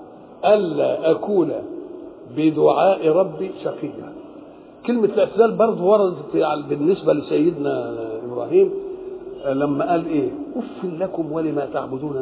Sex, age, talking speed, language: male, 60-79, 95 wpm, English